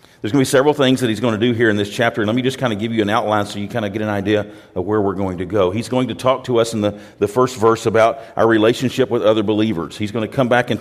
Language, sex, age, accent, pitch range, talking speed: English, male, 40-59, American, 100-120 Hz, 340 wpm